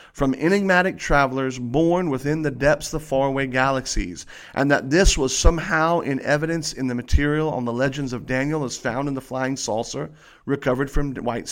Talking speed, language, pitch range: 175 wpm, English, 130-155 Hz